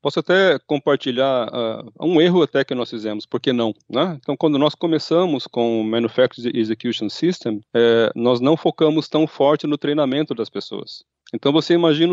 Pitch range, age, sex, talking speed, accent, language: 115-155 Hz, 40-59, male, 180 wpm, Brazilian, Portuguese